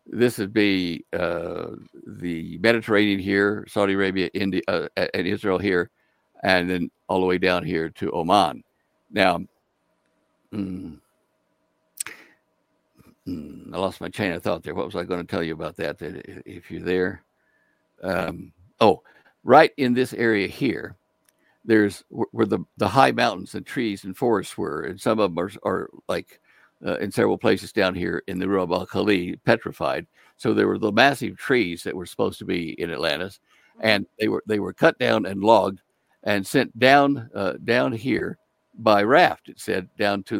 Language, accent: English, American